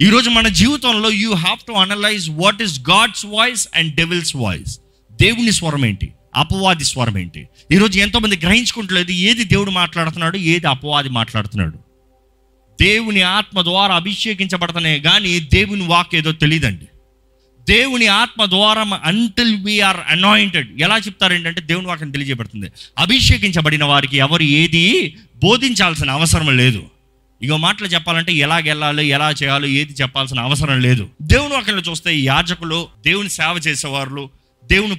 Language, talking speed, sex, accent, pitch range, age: Telugu, 135 wpm, male, native, 135-195 Hz, 30-49